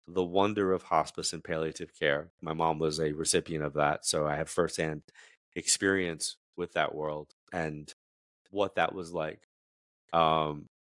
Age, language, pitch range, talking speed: 30-49, English, 75-90 Hz, 155 wpm